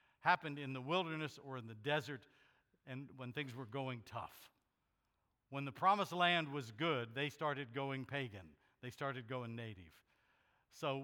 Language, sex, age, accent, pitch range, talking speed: English, male, 60-79, American, 125-155 Hz, 160 wpm